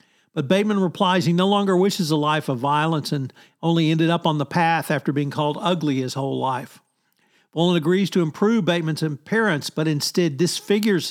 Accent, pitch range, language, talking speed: American, 150-175 Hz, English, 185 wpm